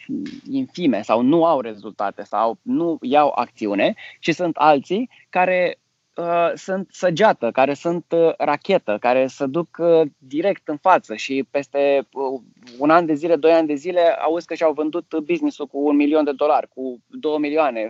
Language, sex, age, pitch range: Romanian, male, 20-39, 130-170 Hz